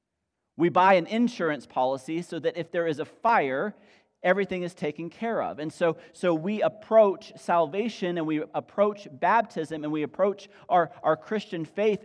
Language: English